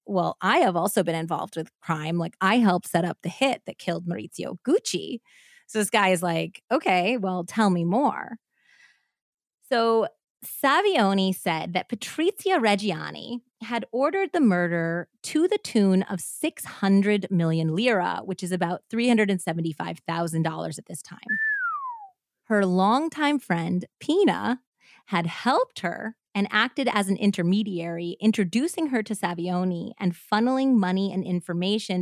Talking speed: 140 wpm